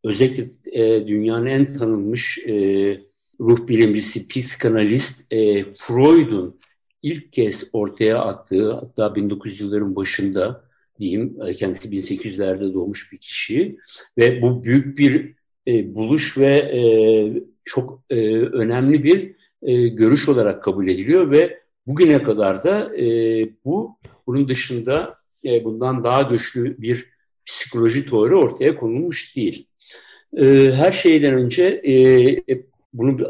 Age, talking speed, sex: 60-79, 100 wpm, male